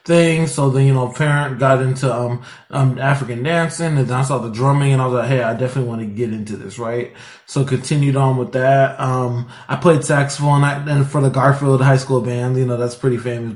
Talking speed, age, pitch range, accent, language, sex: 235 wpm, 20-39, 125-150 Hz, American, English, male